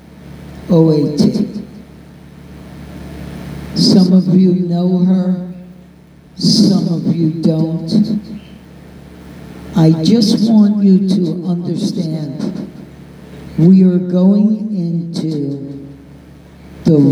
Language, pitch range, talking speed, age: English, 160-205 Hz, 70 wpm, 60-79